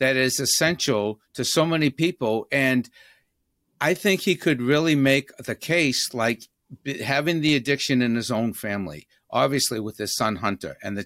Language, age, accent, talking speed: English, 50-69, American, 170 wpm